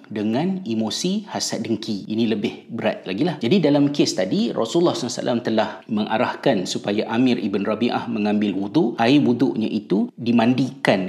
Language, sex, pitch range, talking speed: Malay, male, 105-120 Hz, 145 wpm